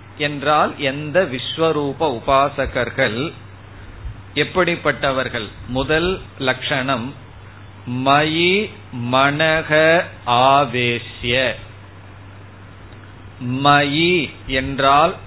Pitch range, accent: 110-145 Hz, native